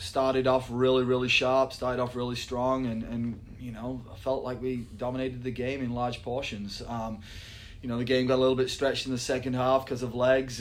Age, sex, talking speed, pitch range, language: 20-39, male, 220 wpm, 120-130 Hz, English